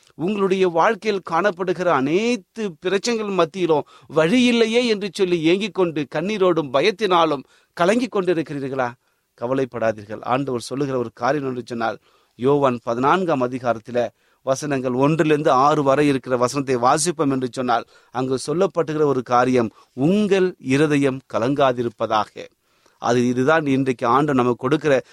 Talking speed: 110 wpm